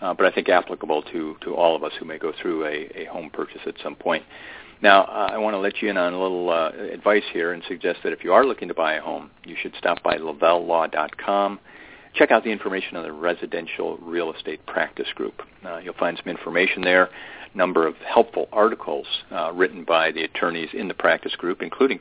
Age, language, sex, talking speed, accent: 50-69, English, male, 225 wpm, American